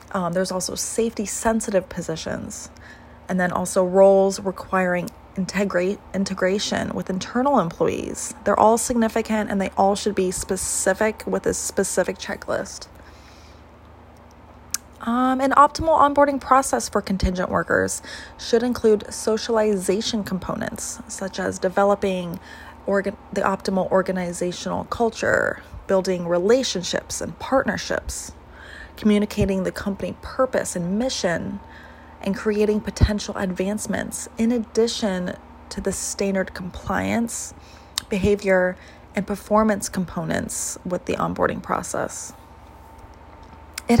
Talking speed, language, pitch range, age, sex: 100 wpm, English, 175-220 Hz, 20-39, female